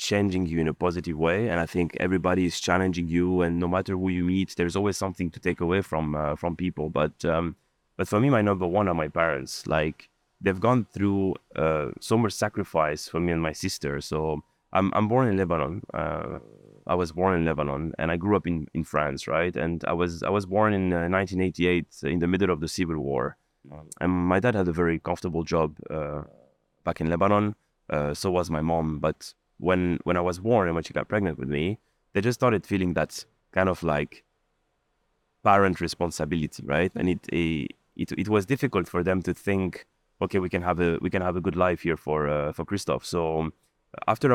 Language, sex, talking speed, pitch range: English, male, 215 wpm, 80-95 Hz